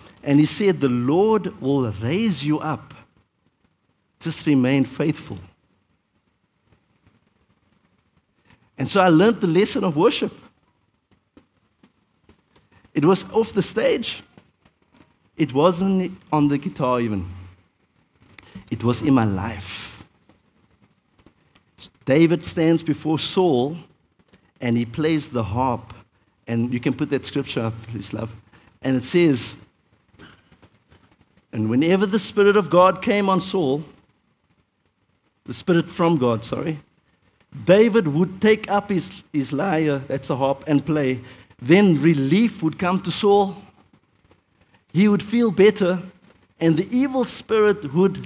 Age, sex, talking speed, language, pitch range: 50-69, male, 120 wpm, English, 110-175 Hz